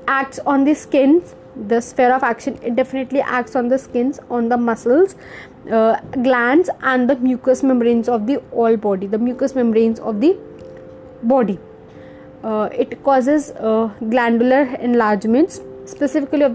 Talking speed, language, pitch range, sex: 150 wpm, English, 240-275 Hz, female